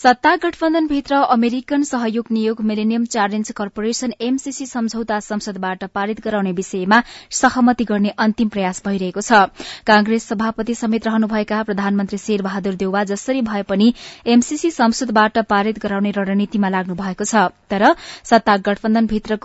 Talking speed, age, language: 115 wpm, 20-39, English